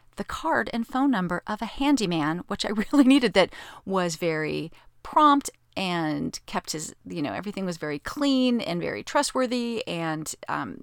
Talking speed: 165 wpm